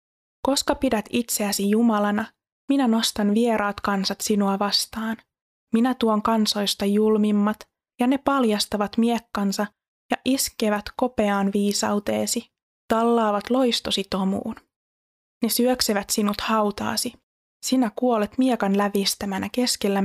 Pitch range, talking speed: 205-235 Hz, 100 wpm